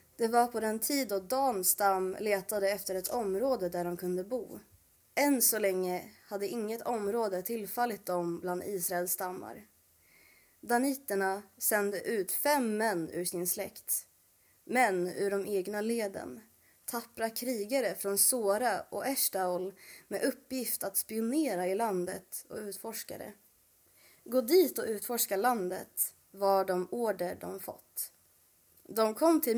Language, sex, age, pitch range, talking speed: Swedish, female, 20-39, 190-240 Hz, 135 wpm